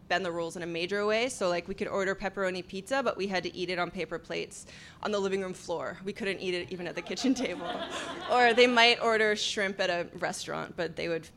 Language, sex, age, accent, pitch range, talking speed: English, female, 20-39, American, 175-215 Hz, 255 wpm